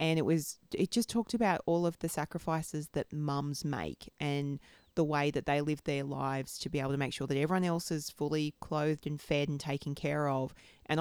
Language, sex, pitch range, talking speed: English, female, 150-205 Hz, 225 wpm